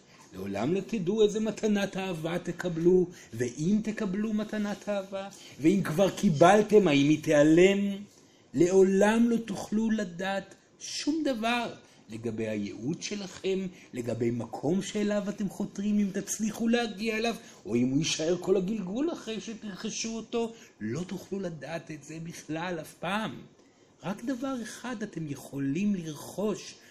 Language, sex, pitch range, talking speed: Hebrew, male, 140-210 Hz, 130 wpm